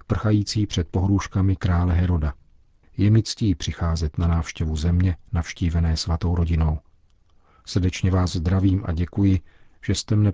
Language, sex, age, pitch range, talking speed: Czech, male, 50-69, 85-100 Hz, 135 wpm